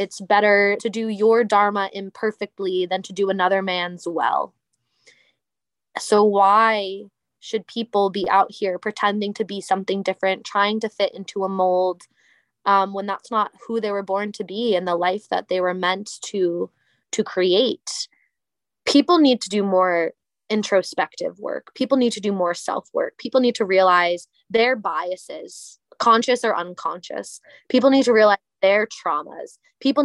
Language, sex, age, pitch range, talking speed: English, female, 20-39, 195-250 Hz, 160 wpm